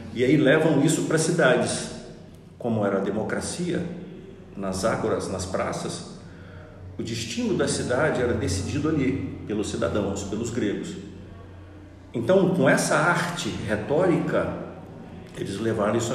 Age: 50-69